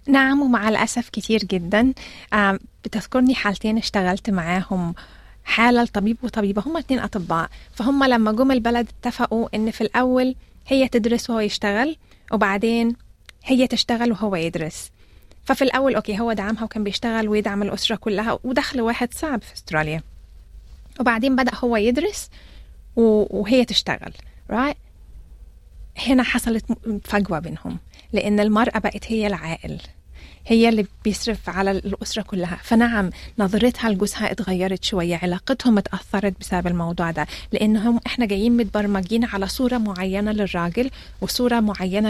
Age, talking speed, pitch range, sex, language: 20-39, 125 wpm, 195-235 Hz, female, Arabic